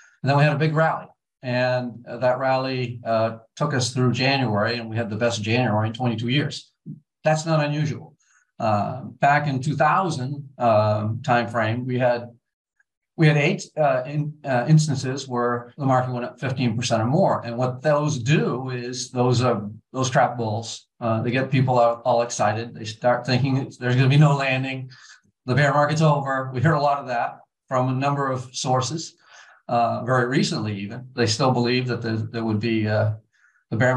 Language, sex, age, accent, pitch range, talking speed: English, male, 50-69, American, 120-140 Hz, 185 wpm